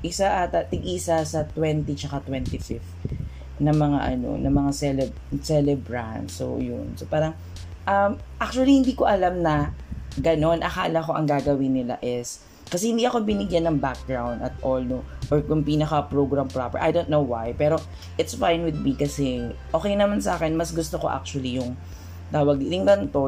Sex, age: female, 20-39